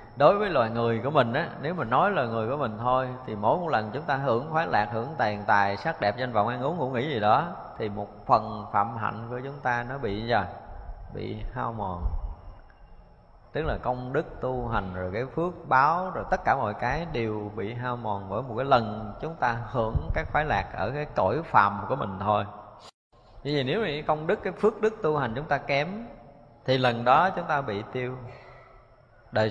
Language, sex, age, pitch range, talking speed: Vietnamese, male, 20-39, 105-135 Hz, 225 wpm